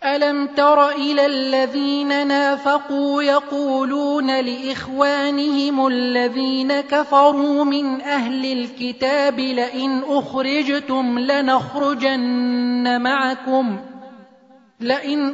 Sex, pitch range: male, 255-285 Hz